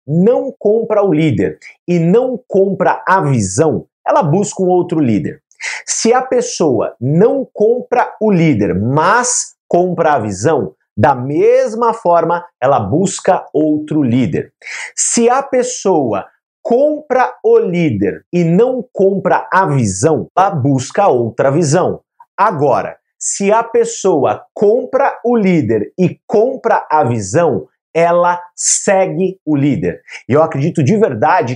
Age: 50-69